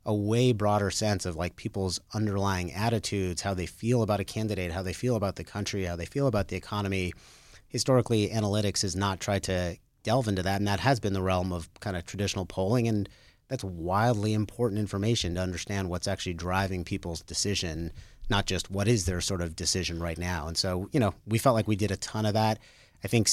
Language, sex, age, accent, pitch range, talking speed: English, male, 30-49, American, 90-110 Hz, 215 wpm